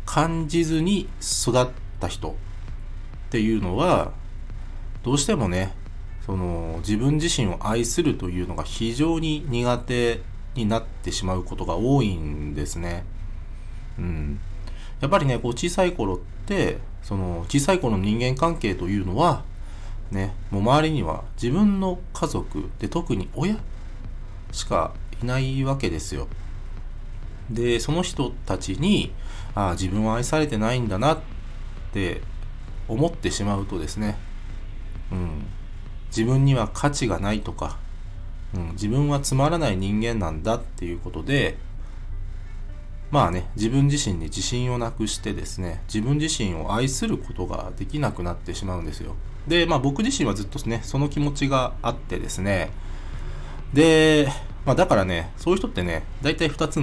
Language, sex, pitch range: Japanese, male, 95-125 Hz